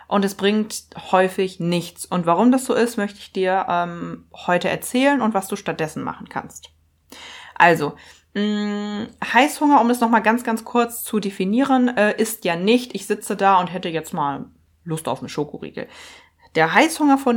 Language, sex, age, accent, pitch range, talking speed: German, female, 20-39, German, 175-215 Hz, 175 wpm